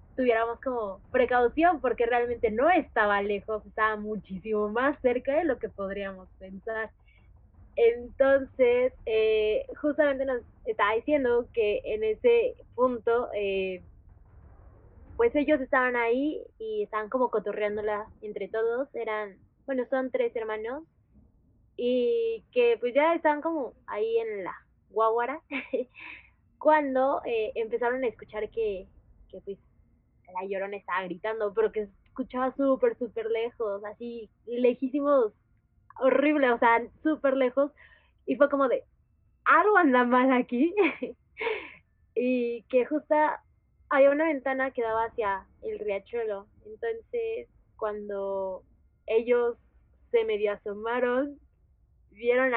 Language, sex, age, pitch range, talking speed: Spanish, female, 20-39, 215-305 Hz, 120 wpm